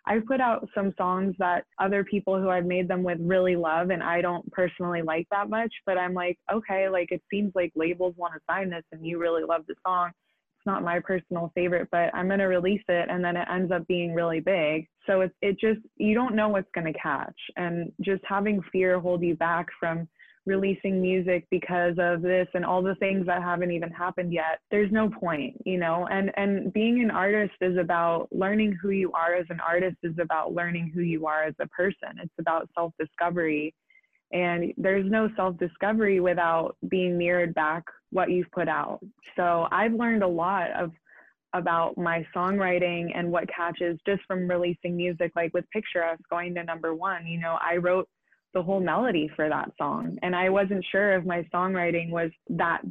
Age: 20-39